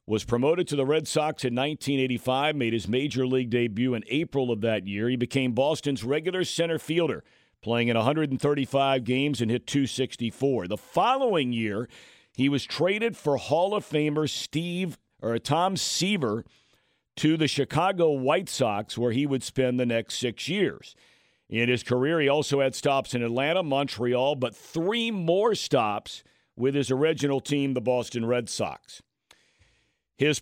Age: 50-69